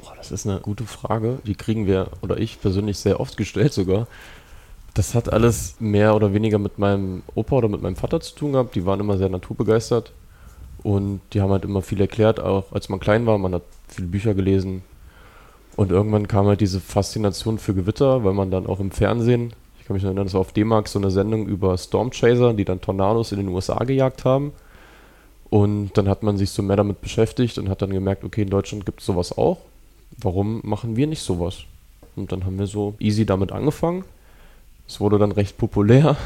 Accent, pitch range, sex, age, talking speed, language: German, 95-110 Hz, male, 20-39, 210 wpm, German